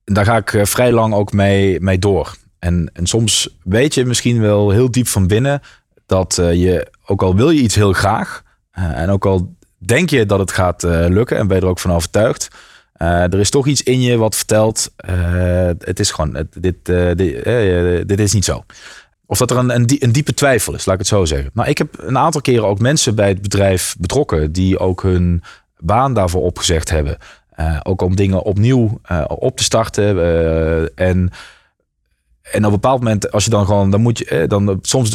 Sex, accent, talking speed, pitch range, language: male, Dutch, 200 wpm, 90-115 Hz, Dutch